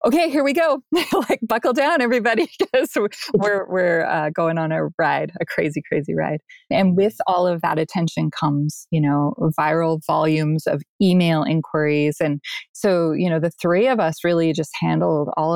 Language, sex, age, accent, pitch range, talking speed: English, female, 20-39, American, 160-210 Hz, 175 wpm